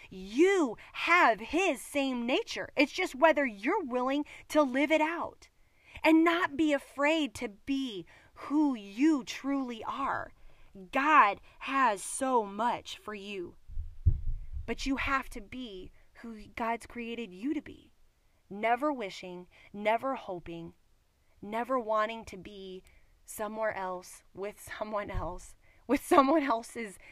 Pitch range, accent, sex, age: 200-275 Hz, American, female, 20-39